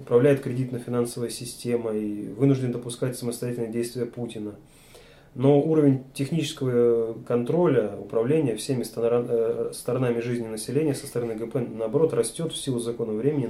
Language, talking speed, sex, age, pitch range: Russian, 125 wpm, male, 20-39, 115-140 Hz